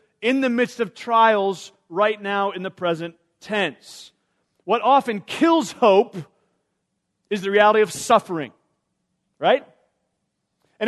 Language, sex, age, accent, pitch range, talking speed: English, male, 40-59, American, 185-225 Hz, 120 wpm